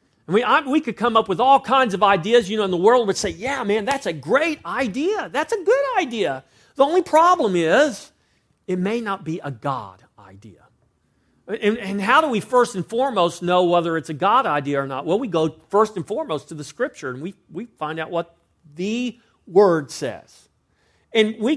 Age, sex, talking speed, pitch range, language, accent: 40-59, male, 210 wpm, 160-235 Hz, English, American